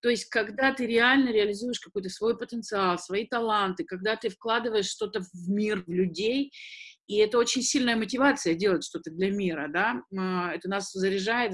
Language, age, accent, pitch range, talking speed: Russian, 30-49, native, 195-275 Hz, 165 wpm